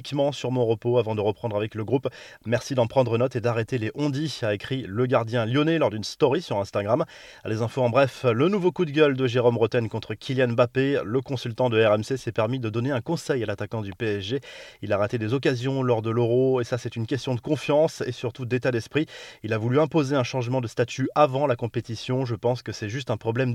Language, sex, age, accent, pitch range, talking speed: French, male, 30-49, French, 115-140 Hz, 235 wpm